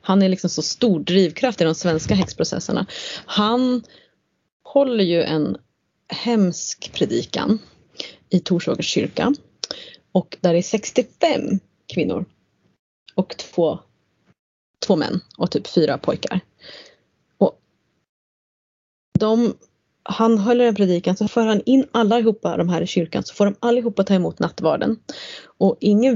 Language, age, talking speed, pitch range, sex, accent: Swedish, 30-49, 130 wpm, 185-240 Hz, female, native